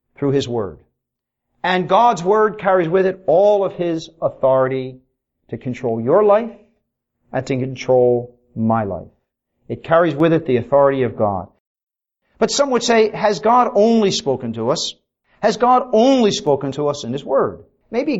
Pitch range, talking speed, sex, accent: 140-210 Hz, 165 wpm, male, American